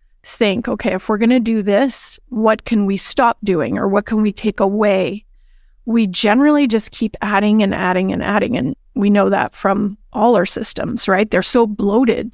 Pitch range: 205-240 Hz